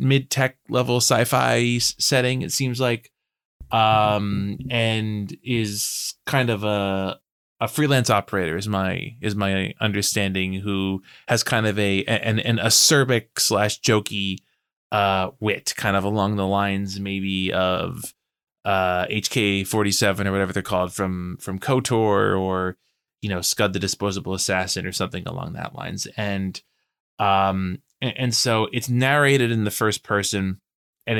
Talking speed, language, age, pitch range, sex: 140 wpm, English, 20-39, 95-120 Hz, male